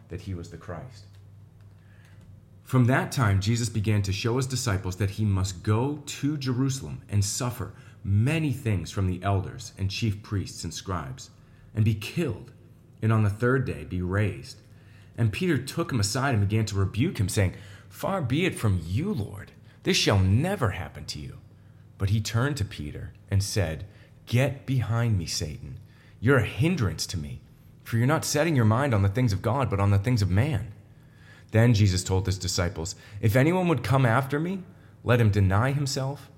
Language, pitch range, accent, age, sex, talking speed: English, 100-130 Hz, American, 30-49, male, 185 wpm